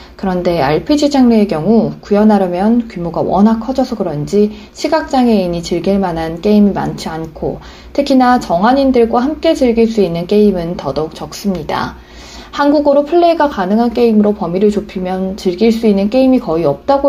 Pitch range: 180-245 Hz